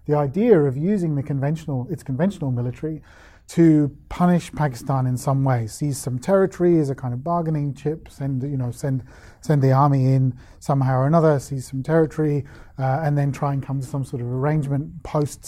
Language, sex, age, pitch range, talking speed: English, male, 40-59, 130-160 Hz, 195 wpm